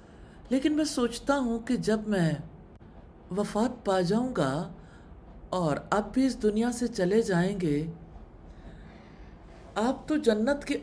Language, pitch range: English, 165-220 Hz